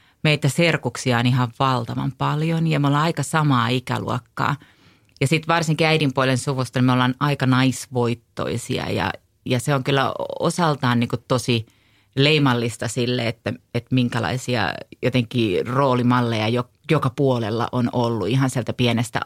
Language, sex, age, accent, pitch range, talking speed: English, female, 30-49, Finnish, 120-145 Hz, 135 wpm